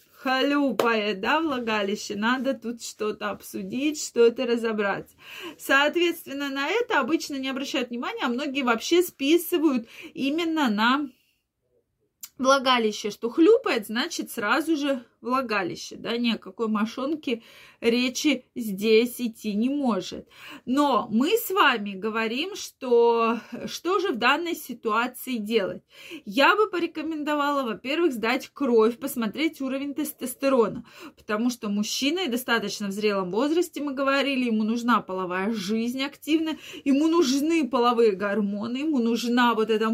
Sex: female